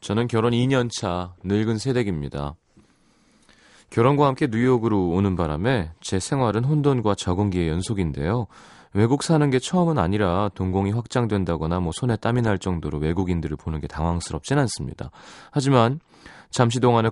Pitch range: 90-125 Hz